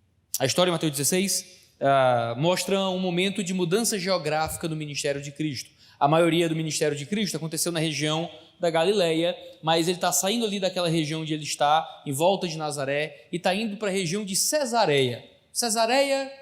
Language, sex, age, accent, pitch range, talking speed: Portuguese, male, 20-39, Brazilian, 150-205 Hz, 185 wpm